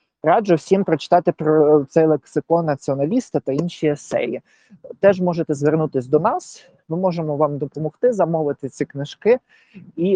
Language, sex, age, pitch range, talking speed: Ukrainian, male, 20-39, 140-180 Hz, 135 wpm